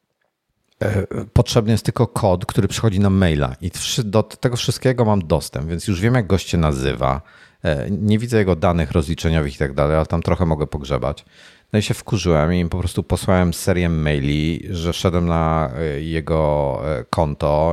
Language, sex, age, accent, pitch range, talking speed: Polish, male, 50-69, native, 85-110 Hz, 165 wpm